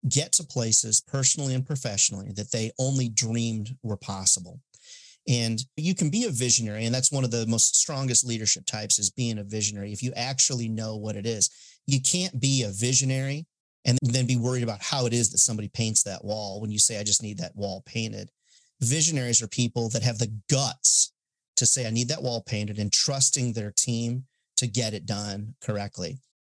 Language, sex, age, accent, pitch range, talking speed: English, male, 40-59, American, 110-135 Hz, 200 wpm